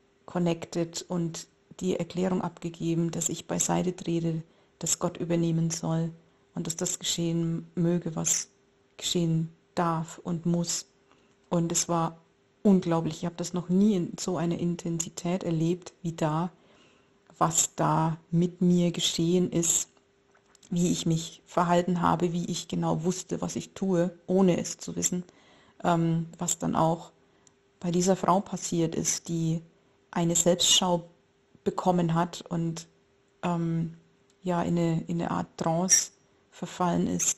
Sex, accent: female, German